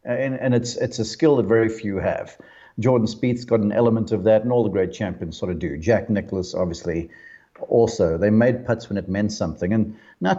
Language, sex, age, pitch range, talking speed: English, male, 50-69, 105-140 Hz, 220 wpm